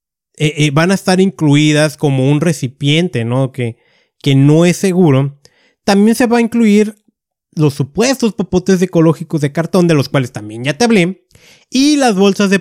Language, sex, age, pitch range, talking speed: Spanish, male, 30-49, 140-200 Hz, 170 wpm